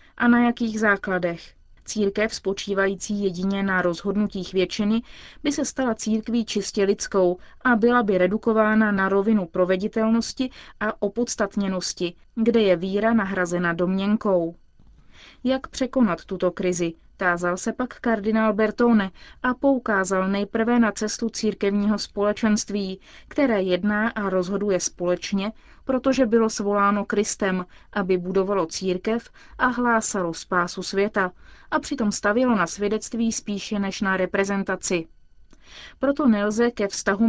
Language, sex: Czech, female